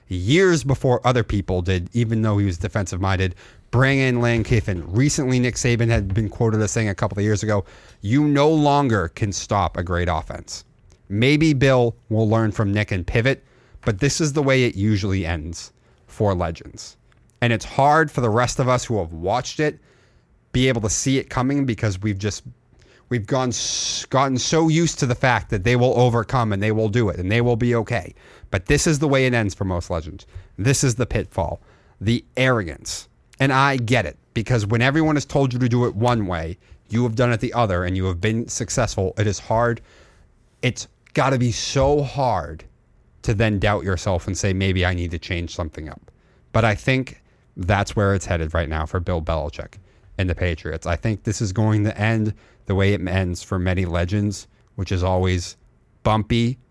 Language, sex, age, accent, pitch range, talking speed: English, male, 30-49, American, 95-125 Hz, 205 wpm